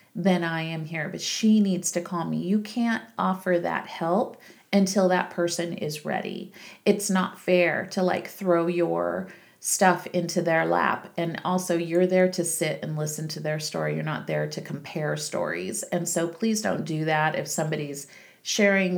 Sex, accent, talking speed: female, American, 180 wpm